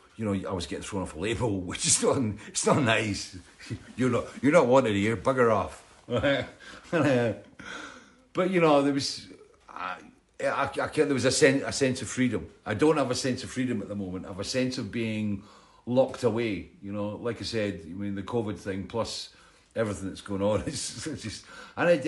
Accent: British